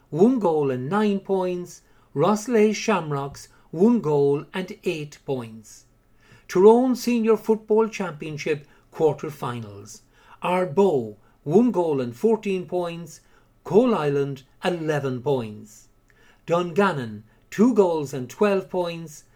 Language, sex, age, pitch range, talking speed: English, male, 50-69, 130-200 Hz, 105 wpm